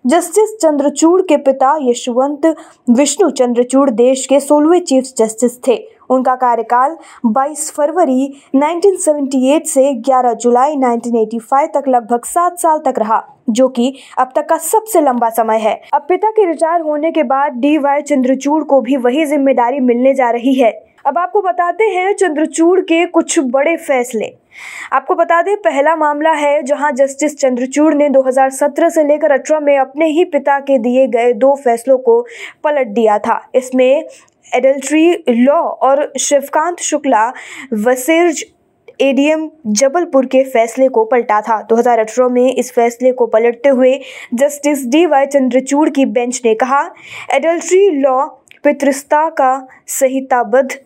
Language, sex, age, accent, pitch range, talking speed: Hindi, female, 20-39, native, 255-315 Hz, 145 wpm